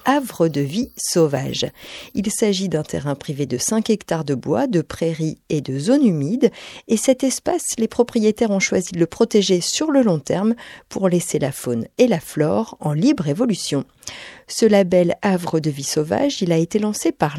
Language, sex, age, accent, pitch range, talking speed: French, female, 50-69, French, 150-215 Hz, 190 wpm